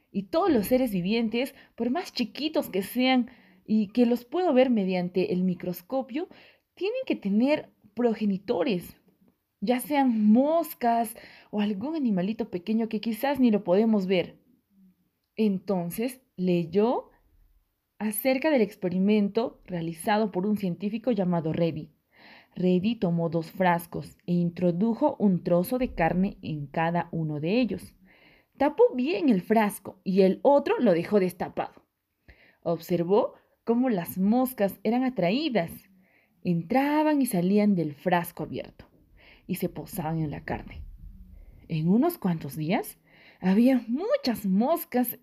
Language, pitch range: Spanish, 175-250 Hz